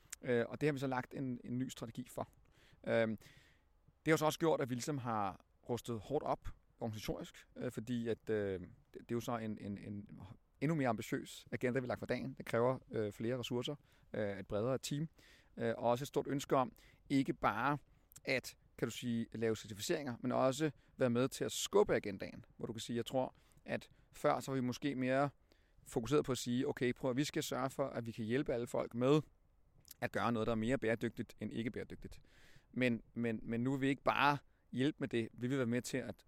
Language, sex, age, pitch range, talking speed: Danish, male, 30-49, 115-135 Hz, 225 wpm